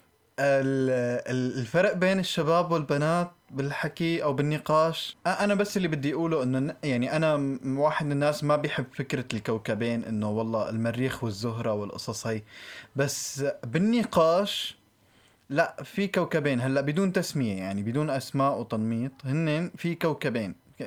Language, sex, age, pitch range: Arabic, male, 20-39, 125-165 Hz